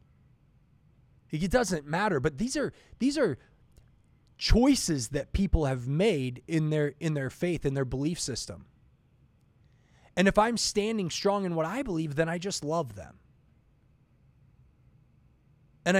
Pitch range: 135-190 Hz